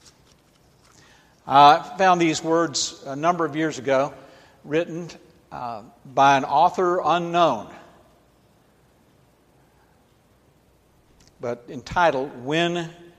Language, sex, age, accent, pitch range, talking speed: English, male, 60-79, American, 130-170 Hz, 80 wpm